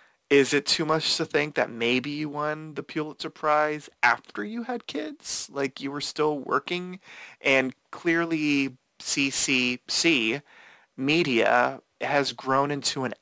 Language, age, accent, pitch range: English, 30-49, American, 125-150 Hz